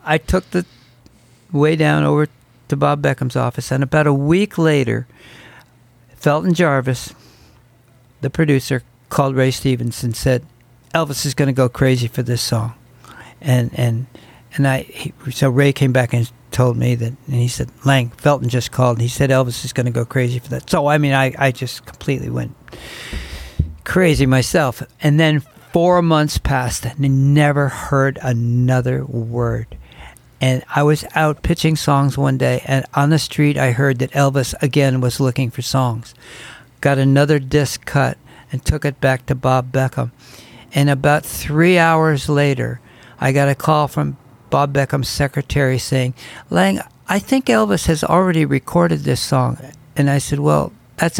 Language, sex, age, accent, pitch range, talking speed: English, male, 60-79, American, 125-145 Hz, 165 wpm